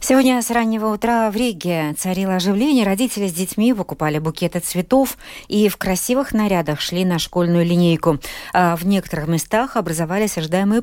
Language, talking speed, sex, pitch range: Russian, 150 wpm, female, 155-220 Hz